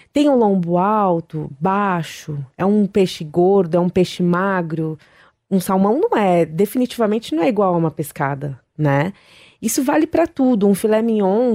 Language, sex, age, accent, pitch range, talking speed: English, female, 20-39, Brazilian, 170-225 Hz, 165 wpm